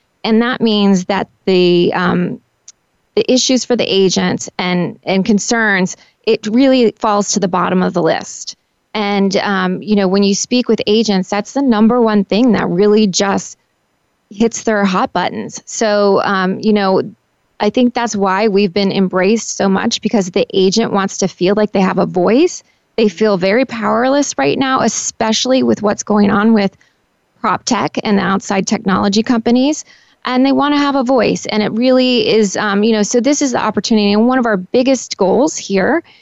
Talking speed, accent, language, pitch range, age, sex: 185 wpm, American, English, 195-235 Hz, 20-39, female